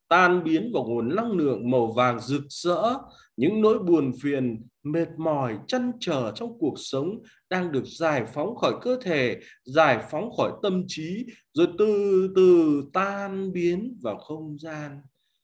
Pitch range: 125-190 Hz